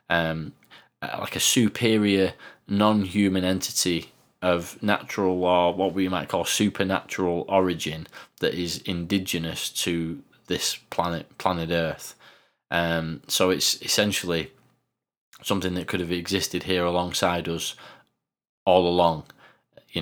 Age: 20-39